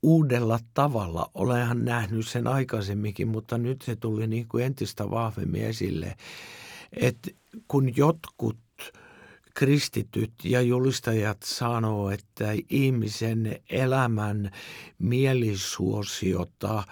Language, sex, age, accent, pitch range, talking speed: Finnish, male, 60-79, native, 115-135 Hz, 90 wpm